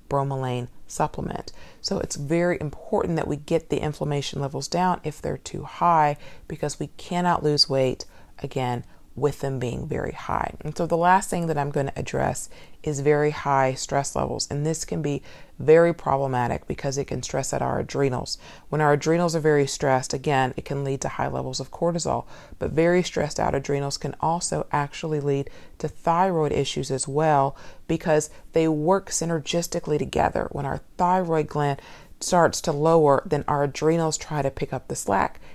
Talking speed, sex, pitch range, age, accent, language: 175 wpm, female, 140-160 Hz, 40-59, American, English